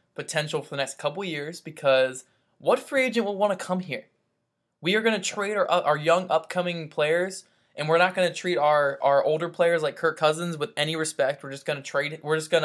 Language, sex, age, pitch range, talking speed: English, male, 20-39, 150-190 Hz, 230 wpm